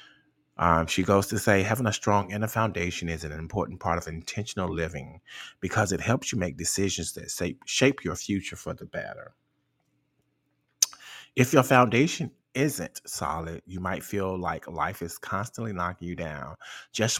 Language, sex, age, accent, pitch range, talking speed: English, male, 30-49, American, 85-110 Hz, 160 wpm